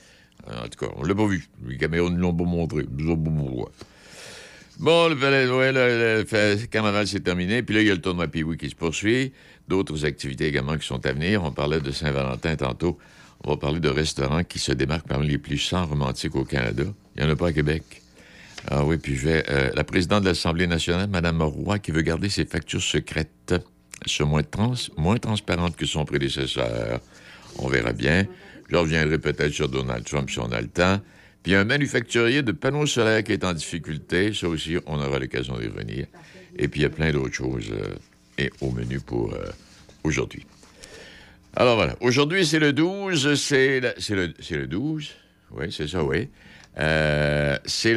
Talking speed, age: 205 wpm, 60-79